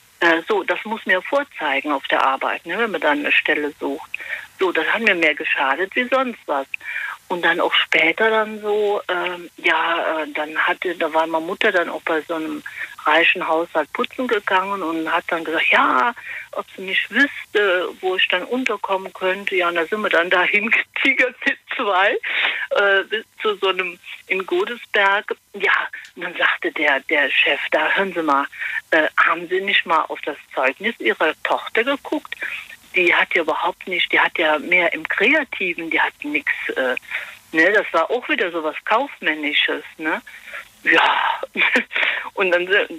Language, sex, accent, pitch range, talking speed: German, female, German, 170-255 Hz, 175 wpm